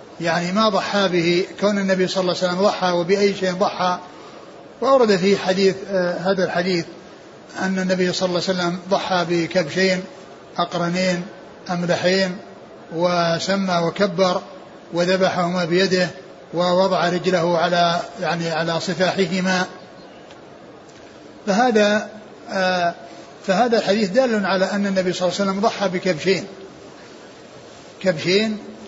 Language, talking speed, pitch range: Arabic, 110 wpm, 180-200 Hz